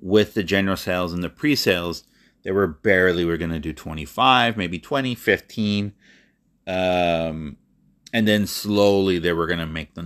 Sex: male